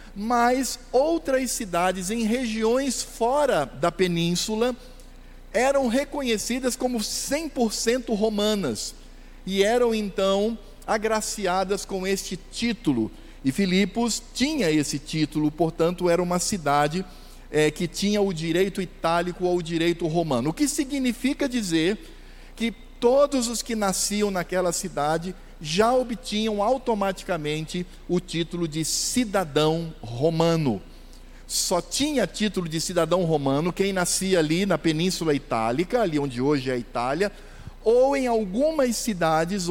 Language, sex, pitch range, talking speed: Portuguese, male, 160-230 Hz, 120 wpm